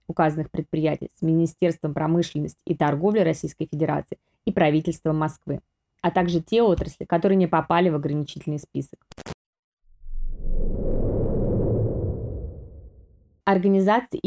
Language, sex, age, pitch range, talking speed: Russian, female, 20-39, 160-190 Hz, 95 wpm